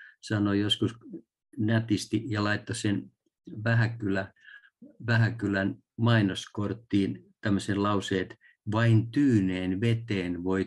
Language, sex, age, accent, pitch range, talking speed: Finnish, male, 50-69, native, 95-115 Hz, 90 wpm